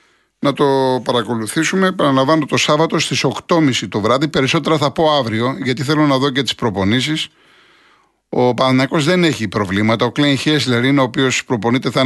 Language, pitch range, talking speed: Greek, 110-150 Hz, 170 wpm